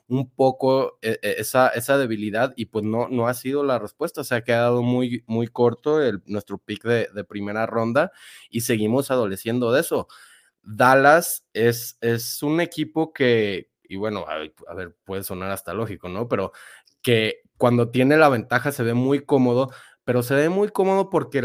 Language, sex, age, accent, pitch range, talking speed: Spanish, male, 20-39, Mexican, 115-140 Hz, 180 wpm